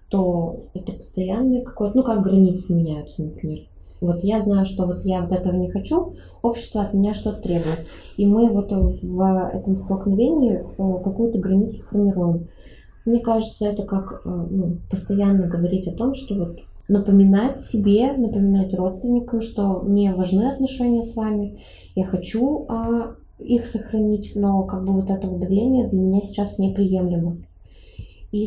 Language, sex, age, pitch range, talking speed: Russian, female, 20-39, 175-205 Hz, 150 wpm